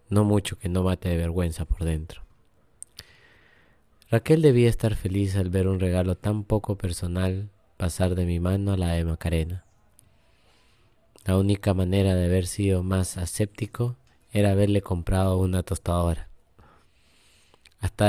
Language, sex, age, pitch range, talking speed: Spanish, male, 20-39, 90-100 Hz, 140 wpm